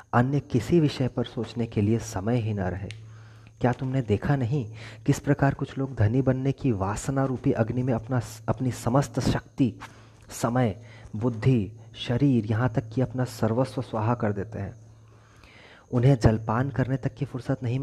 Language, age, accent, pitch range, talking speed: Hindi, 30-49, native, 110-130 Hz, 165 wpm